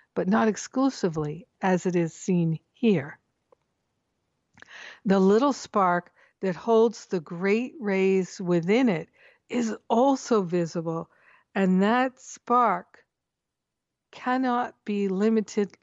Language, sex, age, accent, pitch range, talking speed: English, female, 60-79, American, 170-215 Hz, 100 wpm